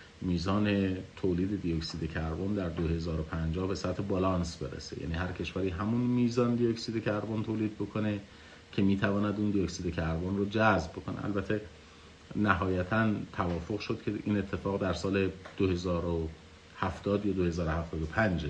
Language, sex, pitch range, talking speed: Persian, male, 85-110 Hz, 135 wpm